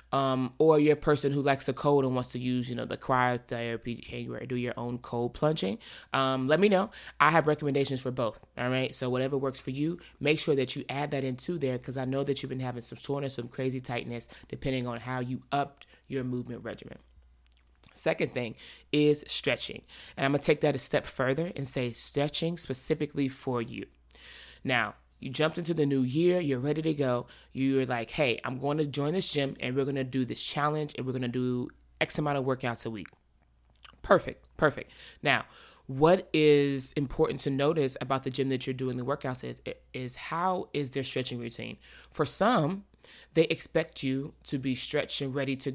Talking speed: 205 wpm